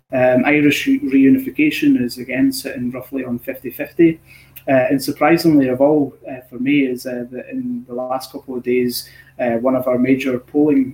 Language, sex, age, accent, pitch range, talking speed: Romanian, male, 20-39, British, 125-150 Hz, 170 wpm